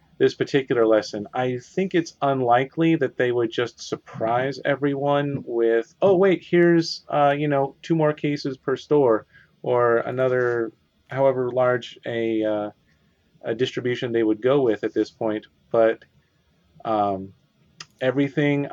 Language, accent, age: English, American, 30-49